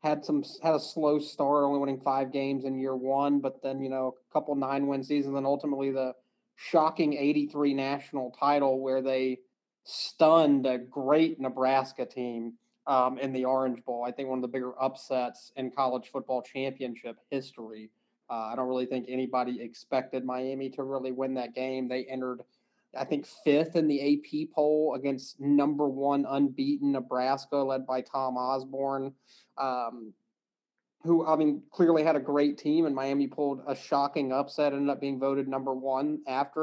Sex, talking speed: male, 175 wpm